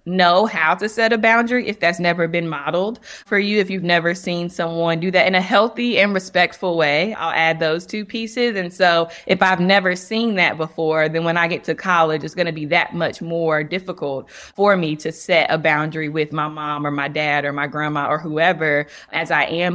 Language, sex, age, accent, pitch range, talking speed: English, female, 20-39, American, 165-195 Hz, 220 wpm